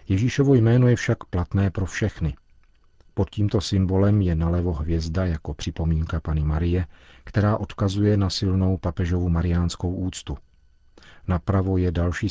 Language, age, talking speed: Czech, 40-59, 130 wpm